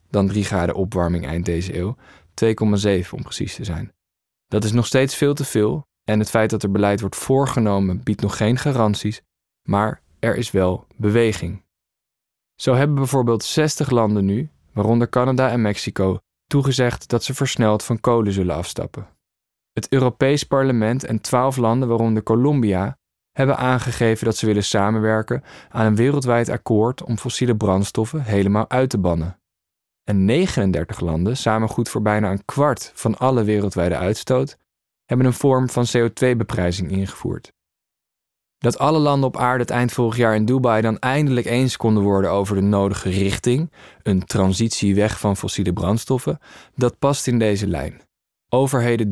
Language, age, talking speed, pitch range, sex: Dutch, 20-39, 160 wpm, 100-125 Hz, male